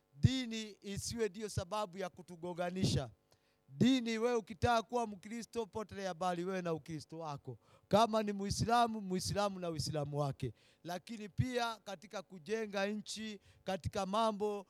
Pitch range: 175-220 Hz